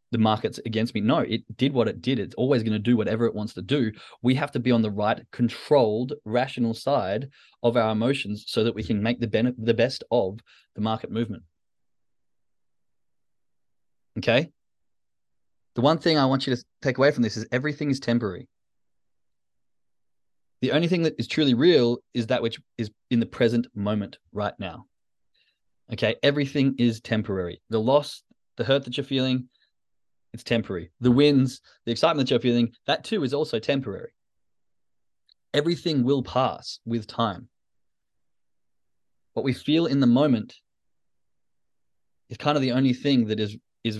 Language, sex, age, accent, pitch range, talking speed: English, male, 20-39, Australian, 110-130 Hz, 170 wpm